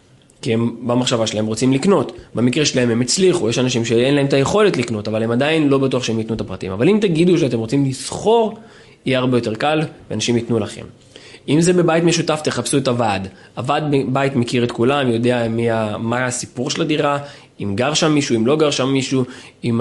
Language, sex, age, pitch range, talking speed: Hebrew, male, 20-39, 115-150 Hz, 205 wpm